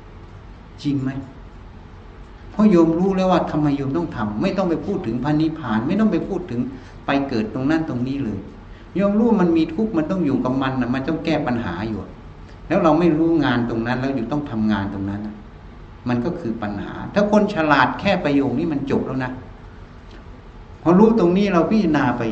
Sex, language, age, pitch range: male, Thai, 60-79, 105-160 Hz